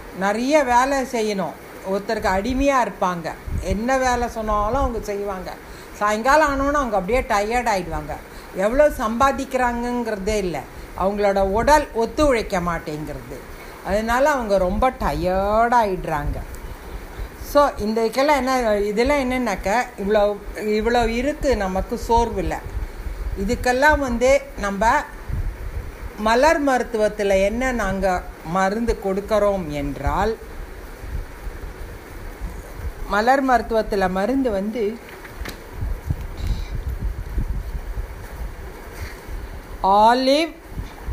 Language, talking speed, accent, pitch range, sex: Tamil, 75 wpm, native, 150-245 Hz, female